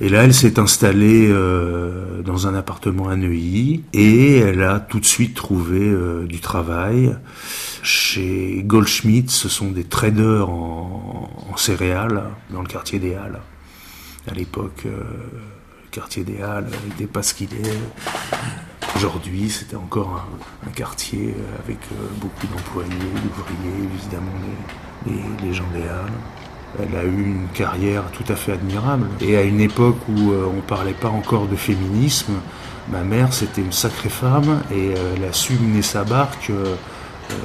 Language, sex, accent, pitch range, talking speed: French, male, French, 95-110 Hz, 165 wpm